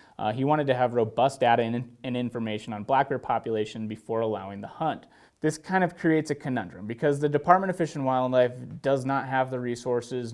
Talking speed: 210 wpm